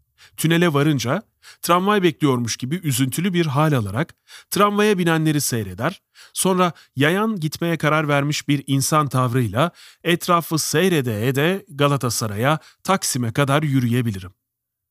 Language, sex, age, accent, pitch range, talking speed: Turkish, male, 40-59, native, 125-175 Hz, 110 wpm